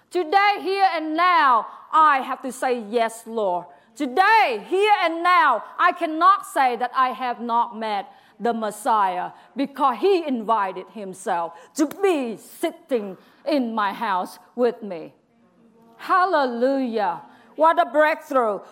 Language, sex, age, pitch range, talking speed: English, female, 50-69, 230-355 Hz, 130 wpm